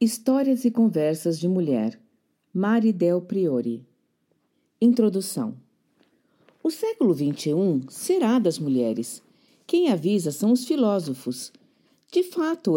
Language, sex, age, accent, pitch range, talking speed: Portuguese, female, 50-69, Brazilian, 155-260 Hz, 100 wpm